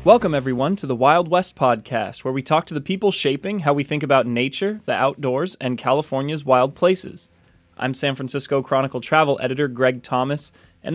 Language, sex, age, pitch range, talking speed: English, male, 20-39, 130-170 Hz, 185 wpm